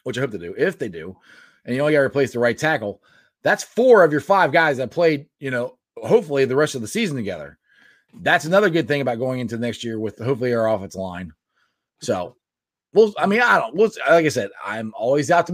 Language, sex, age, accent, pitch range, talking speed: English, male, 30-49, American, 140-215 Hz, 245 wpm